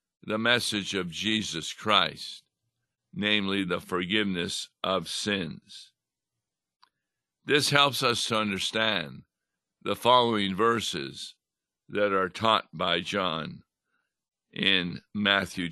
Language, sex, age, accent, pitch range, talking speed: English, male, 60-79, American, 100-120 Hz, 95 wpm